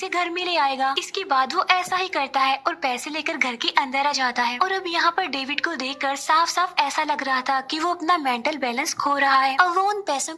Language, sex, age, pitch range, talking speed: English, female, 20-39, 270-365 Hz, 260 wpm